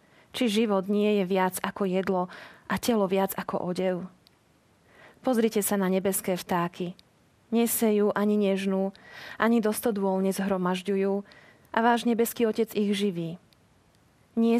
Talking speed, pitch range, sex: 125 wpm, 190-220 Hz, female